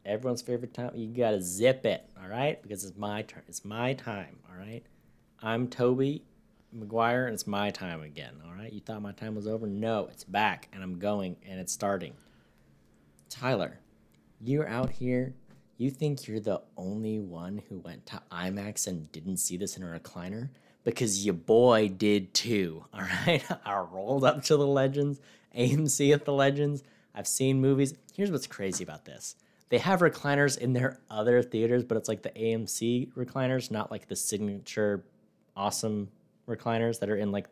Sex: male